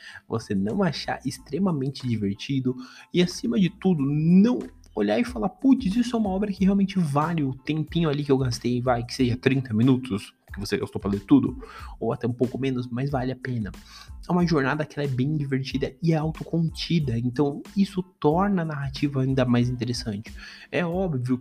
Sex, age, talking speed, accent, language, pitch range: male, 20-39, 190 wpm, Brazilian, Portuguese, 125-165 Hz